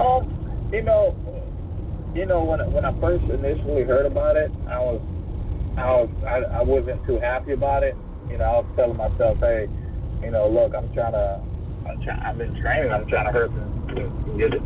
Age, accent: 30-49, American